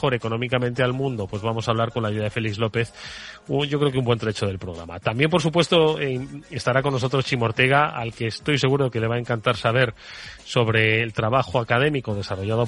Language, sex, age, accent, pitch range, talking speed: Spanish, male, 30-49, Spanish, 115-140 Hz, 220 wpm